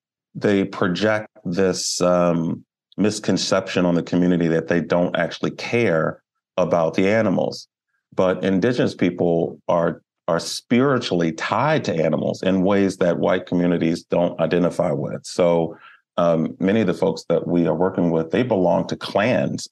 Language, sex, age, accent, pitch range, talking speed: English, male, 40-59, American, 80-90 Hz, 145 wpm